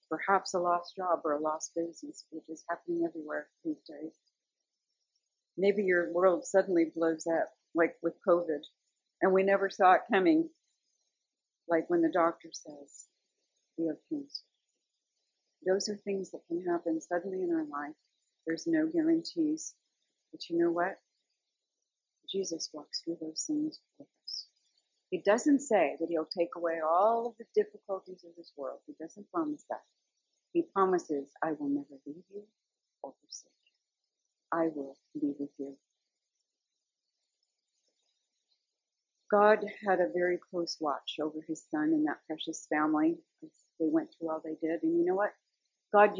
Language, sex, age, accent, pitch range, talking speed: English, female, 50-69, American, 165-210 Hz, 155 wpm